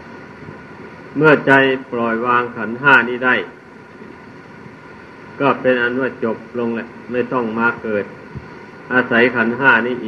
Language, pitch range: Thai, 120-135 Hz